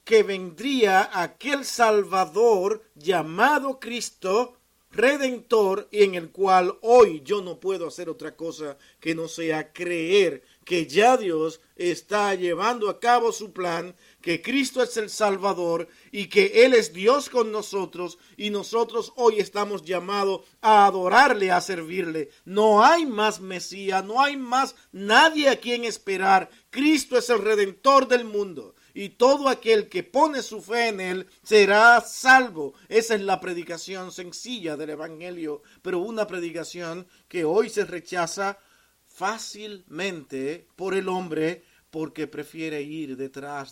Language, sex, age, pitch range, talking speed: Spanish, male, 50-69, 170-235 Hz, 140 wpm